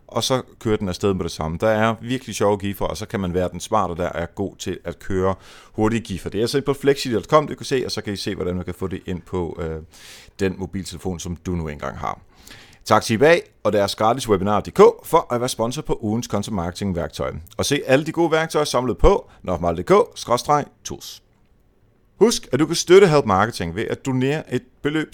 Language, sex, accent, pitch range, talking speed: Danish, male, native, 95-135 Hz, 225 wpm